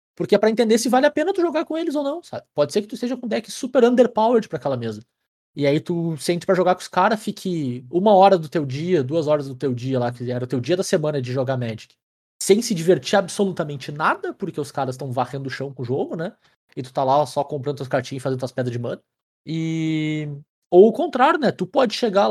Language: Portuguese